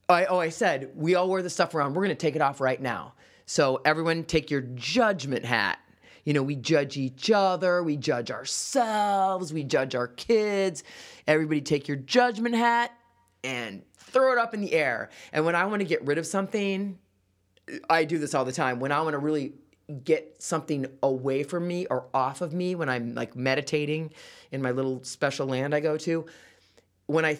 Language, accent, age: English, American, 30-49